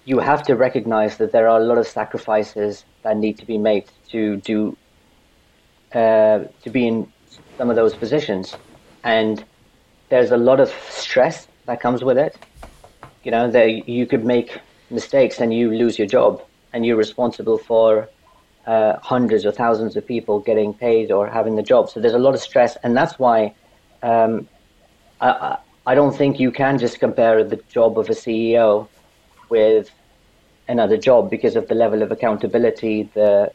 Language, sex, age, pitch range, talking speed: English, male, 30-49, 105-125 Hz, 175 wpm